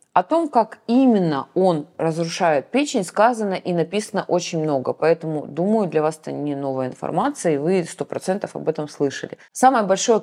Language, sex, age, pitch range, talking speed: Russian, female, 20-39, 150-185 Hz, 165 wpm